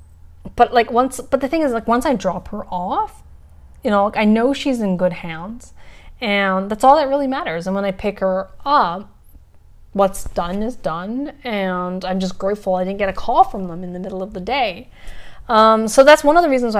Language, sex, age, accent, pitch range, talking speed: English, female, 20-39, American, 185-250 Hz, 220 wpm